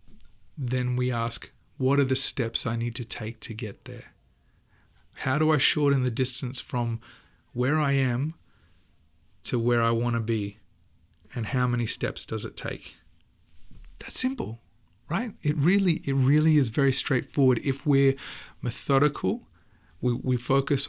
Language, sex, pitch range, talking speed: English, male, 115-135 Hz, 150 wpm